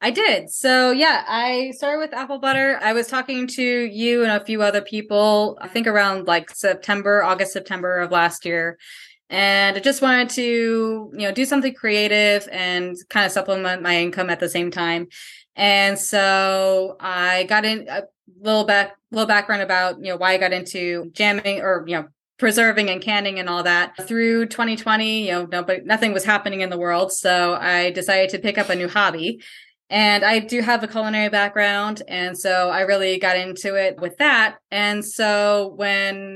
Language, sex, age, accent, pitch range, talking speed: English, female, 20-39, American, 190-230 Hz, 190 wpm